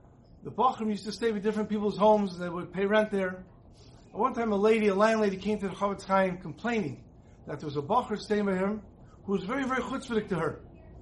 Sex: male